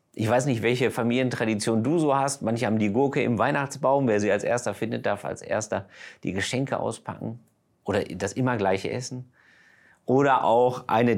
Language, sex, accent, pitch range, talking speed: German, male, German, 110-135 Hz, 175 wpm